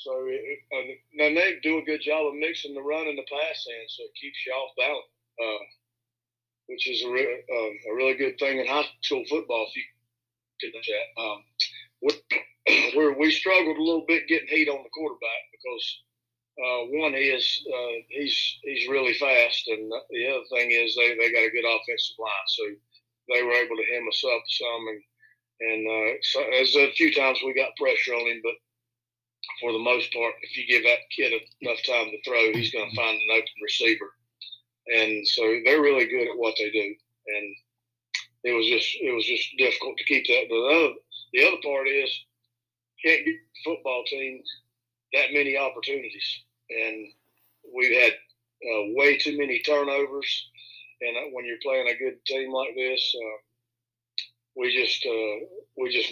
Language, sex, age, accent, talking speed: English, male, 40-59, American, 185 wpm